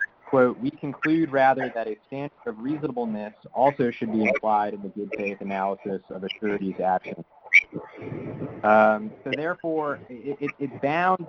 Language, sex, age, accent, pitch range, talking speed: English, male, 30-49, American, 110-135 Hz, 150 wpm